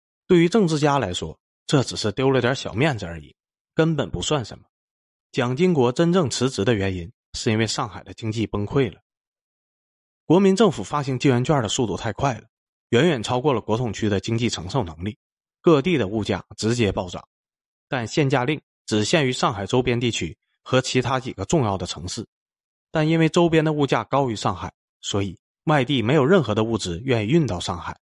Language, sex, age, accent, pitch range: Chinese, male, 30-49, native, 105-145 Hz